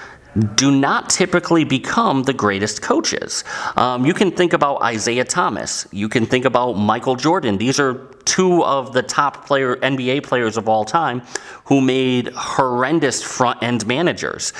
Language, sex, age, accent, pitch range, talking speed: English, male, 30-49, American, 105-140 Hz, 150 wpm